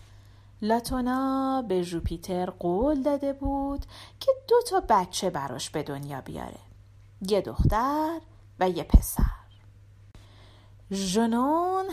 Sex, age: female, 40-59